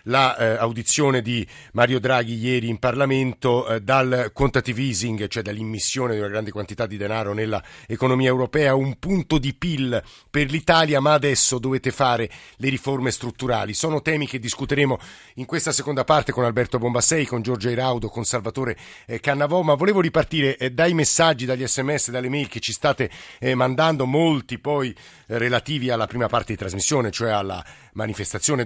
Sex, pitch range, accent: male, 115-145 Hz, native